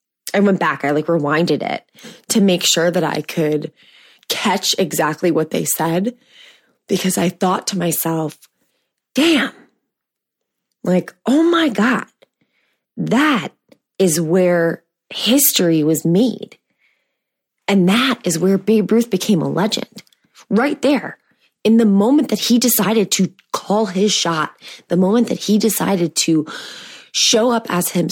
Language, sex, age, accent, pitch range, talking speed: English, female, 20-39, American, 180-240 Hz, 135 wpm